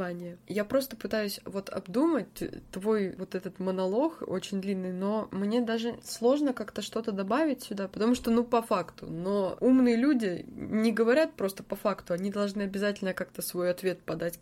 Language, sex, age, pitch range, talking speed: Russian, female, 20-39, 175-215 Hz, 160 wpm